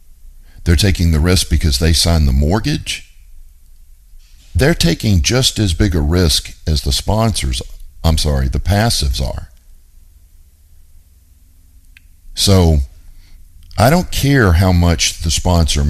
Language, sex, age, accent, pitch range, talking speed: English, male, 50-69, American, 75-90 Hz, 120 wpm